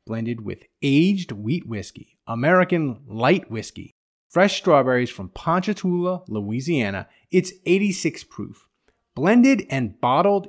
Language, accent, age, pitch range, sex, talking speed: English, American, 30-49, 110-180 Hz, male, 110 wpm